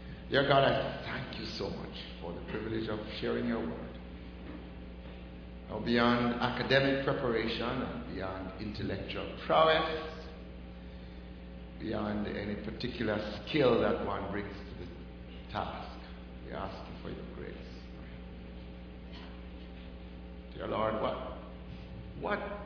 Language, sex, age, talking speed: English, male, 60-79, 105 wpm